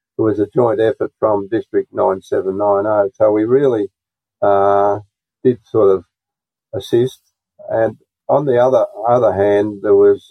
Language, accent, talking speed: English, Australian, 135 wpm